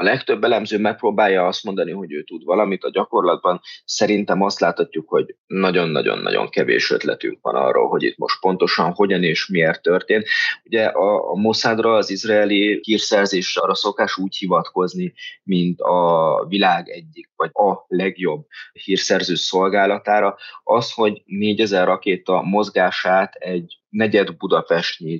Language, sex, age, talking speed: Hungarian, male, 20-39, 135 wpm